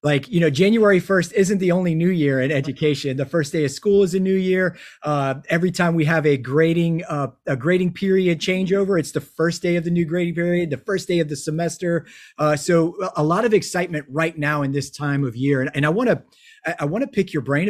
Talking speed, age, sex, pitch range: 240 wpm, 30-49, male, 145-175 Hz